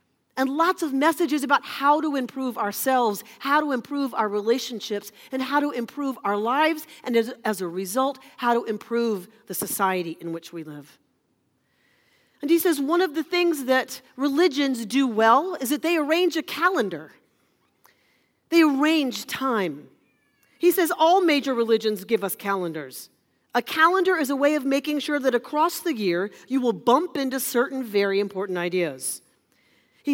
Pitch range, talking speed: 195-285 Hz, 165 wpm